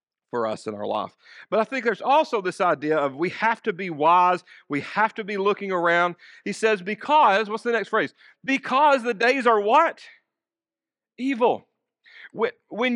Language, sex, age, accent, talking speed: English, male, 40-59, American, 175 wpm